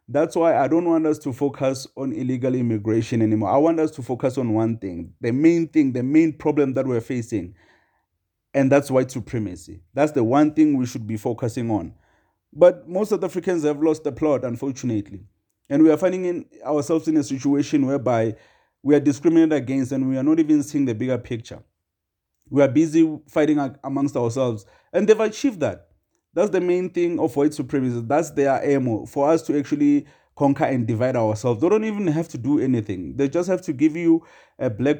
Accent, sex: South African, male